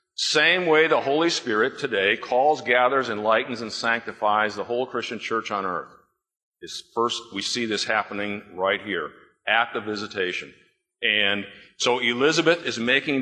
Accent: American